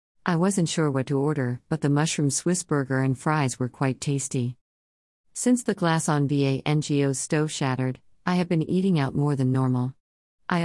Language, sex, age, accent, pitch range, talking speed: English, female, 50-69, American, 130-160 Hz, 180 wpm